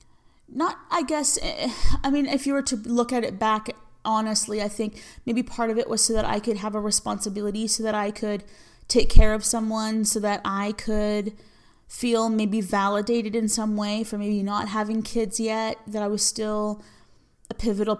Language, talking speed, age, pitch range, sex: English, 195 wpm, 30-49, 210-230 Hz, female